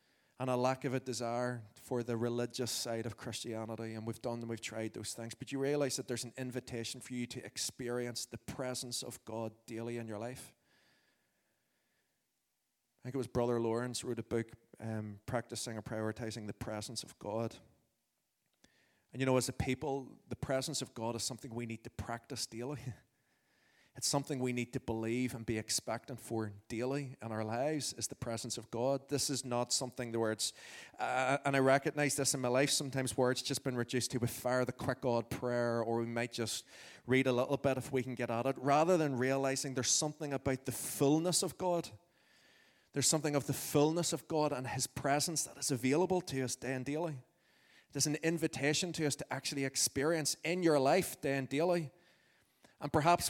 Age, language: 20-39, English